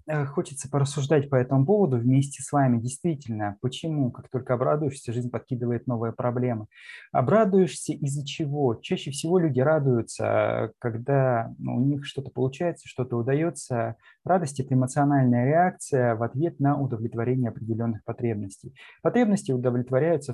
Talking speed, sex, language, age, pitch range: 125 wpm, male, Russian, 20-39, 125-145 Hz